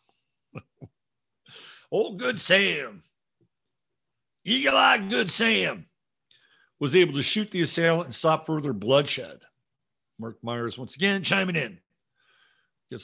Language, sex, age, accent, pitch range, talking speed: English, male, 50-69, American, 130-170 Hz, 110 wpm